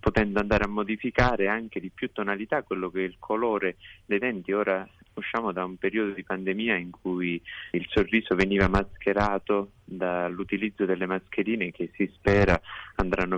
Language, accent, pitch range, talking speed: Italian, native, 90-105 Hz, 155 wpm